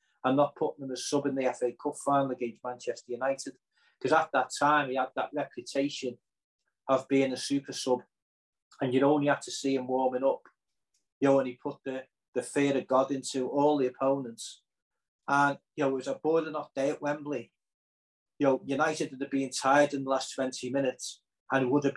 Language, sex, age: English, male, 40-59